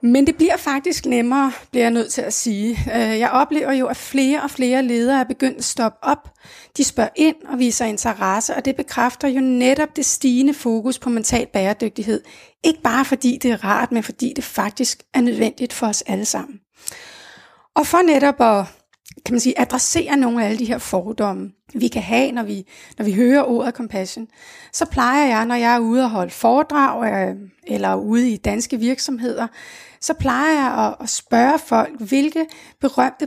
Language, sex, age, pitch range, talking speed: Danish, female, 30-49, 225-275 Hz, 190 wpm